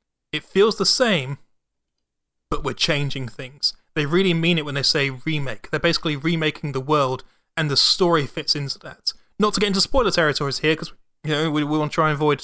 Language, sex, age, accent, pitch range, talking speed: English, male, 30-49, British, 140-165 Hz, 200 wpm